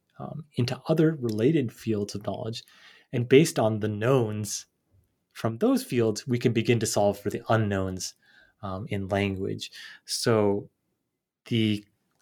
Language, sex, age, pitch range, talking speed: English, male, 20-39, 105-125 Hz, 135 wpm